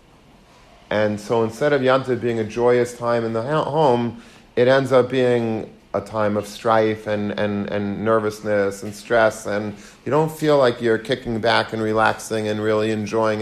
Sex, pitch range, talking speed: male, 105-120 Hz, 175 wpm